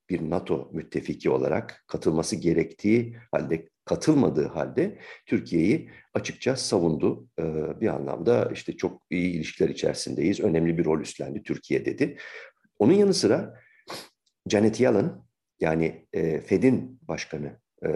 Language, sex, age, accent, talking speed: Turkish, male, 50-69, native, 110 wpm